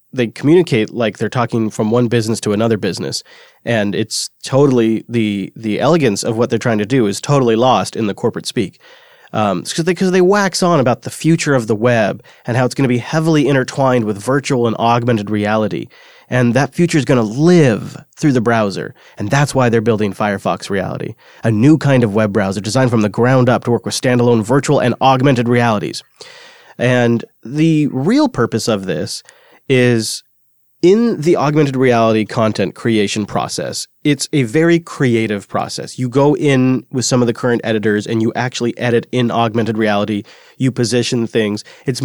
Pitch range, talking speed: 110-135 Hz, 185 wpm